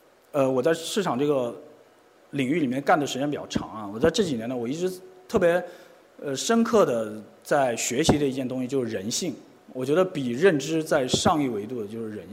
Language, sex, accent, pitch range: Chinese, male, native, 145-220 Hz